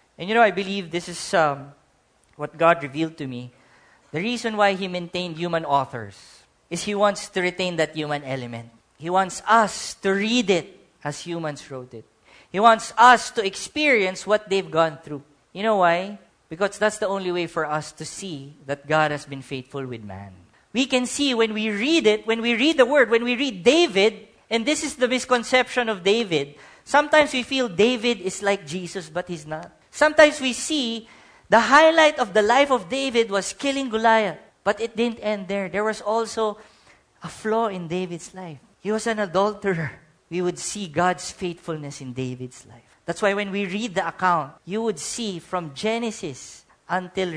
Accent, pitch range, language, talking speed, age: Filipino, 155-220 Hz, English, 190 wpm, 40-59